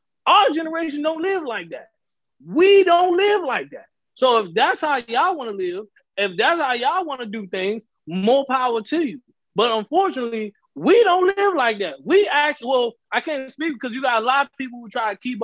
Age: 20-39